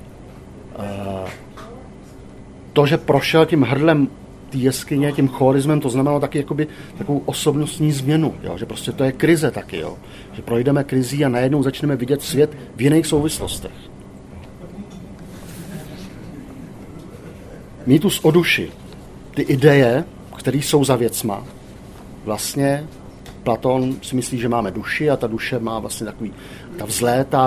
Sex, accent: male, native